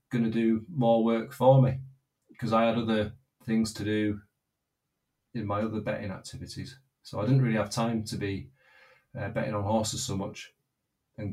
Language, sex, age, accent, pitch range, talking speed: English, male, 30-49, British, 110-130 Hz, 180 wpm